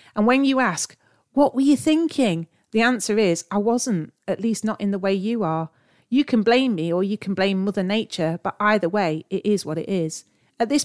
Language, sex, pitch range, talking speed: English, female, 165-220 Hz, 225 wpm